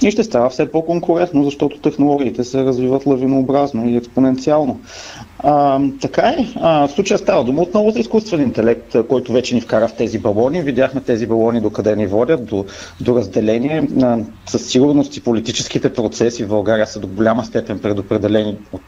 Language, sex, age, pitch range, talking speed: Bulgarian, male, 40-59, 110-140 Hz, 170 wpm